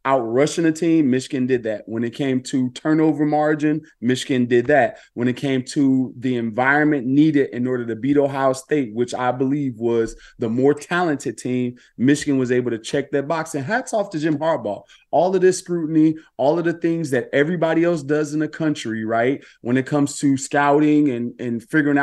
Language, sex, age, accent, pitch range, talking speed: English, male, 30-49, American, 125-160 Hz, 200 wpm